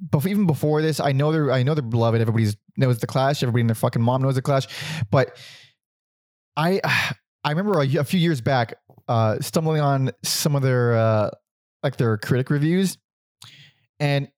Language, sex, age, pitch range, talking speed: English, male, 20-39, 130-175 Hz, 185 wpm